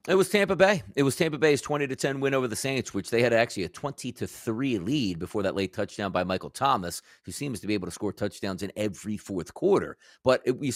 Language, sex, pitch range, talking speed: English, male, 105-145 Hz, 255 wpm